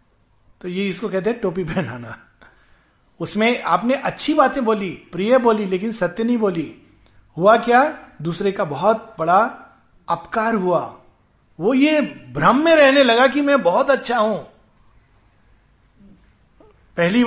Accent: native